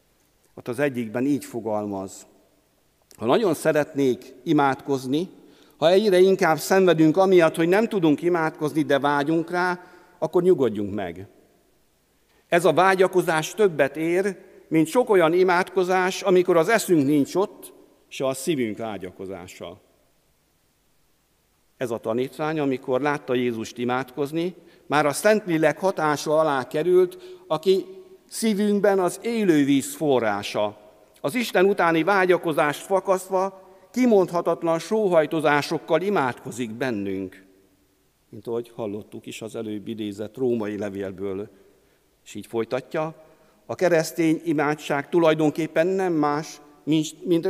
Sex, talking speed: male, 110 wpm